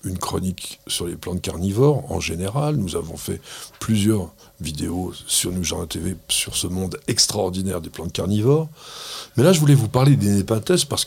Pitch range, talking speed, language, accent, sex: 100-145 Hz, 180 wpm, French, French, male